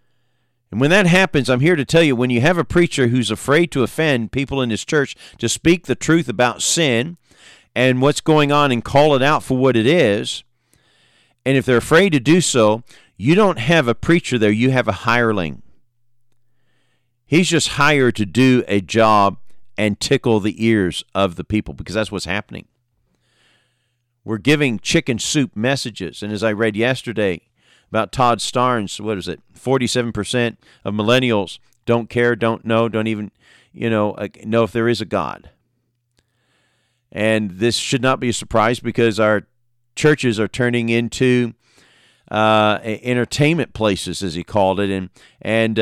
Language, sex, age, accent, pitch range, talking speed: English, male, 50-69, American, 110-125 Hz, 170 wpm